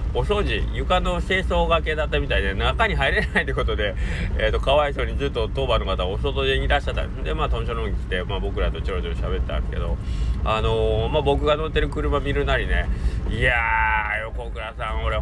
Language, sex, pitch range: Japanese, male, 65-95 Hz